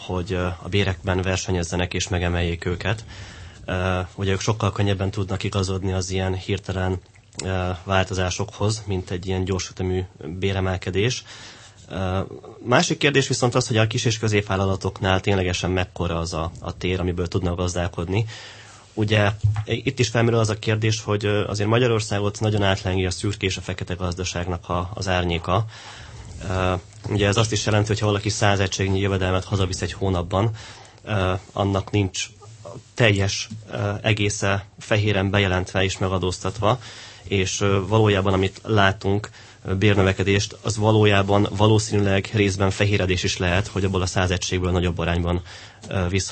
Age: 20-39